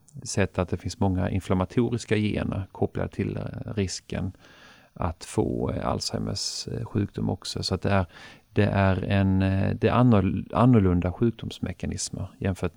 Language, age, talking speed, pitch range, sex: Swedish, 40-59, 125 wpm, 90-110 Hz, male